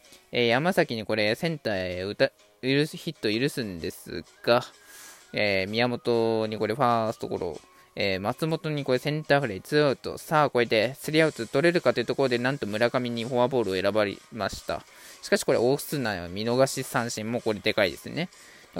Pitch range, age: 110-160 Hz, 20-39